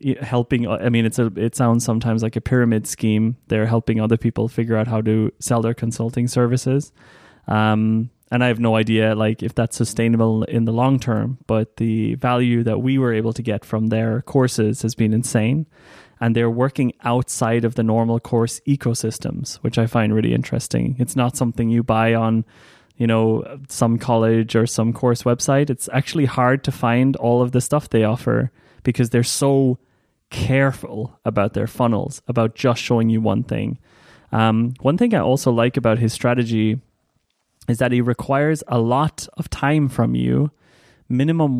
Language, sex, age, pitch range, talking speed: English, male, 20-39, 110-130 Hz, 180 wpm